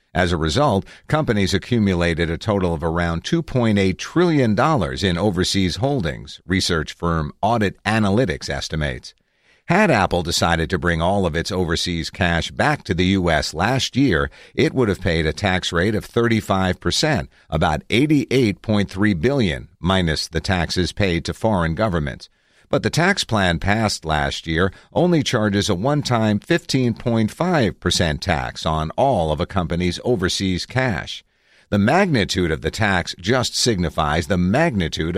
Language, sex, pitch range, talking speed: English, male, 85-105 Hz, 140 wpm